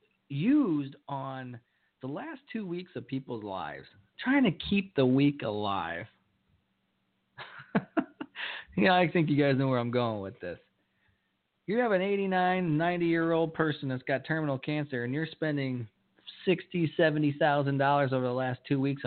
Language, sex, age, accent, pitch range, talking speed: English, male, 40-59, American, 125-170 Hz, 150 wpm